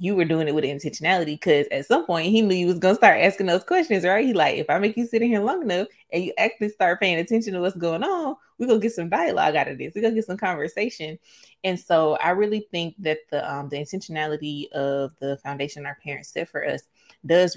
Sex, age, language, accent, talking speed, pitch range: female, 20-39, English, American, 260 wpm, 145-175 Hz